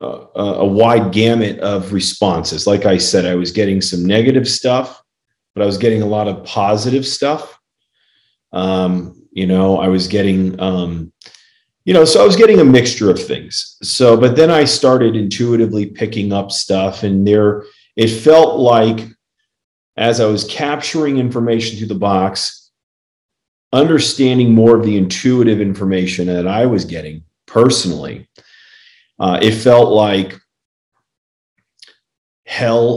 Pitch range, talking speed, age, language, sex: 95-115 Hz, 145 wpm, 40-59, English, male